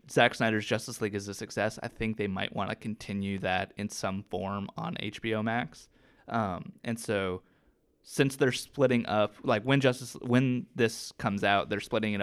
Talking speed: 185 wpm